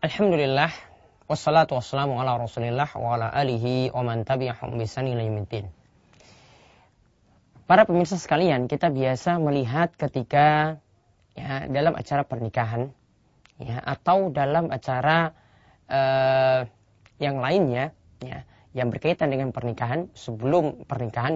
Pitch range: 120-160 Hz